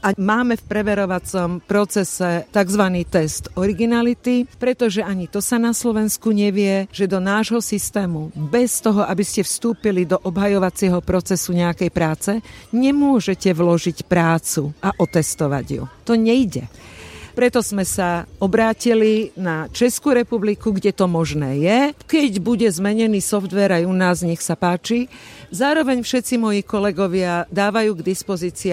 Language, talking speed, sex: Slovak, 135 wpm, female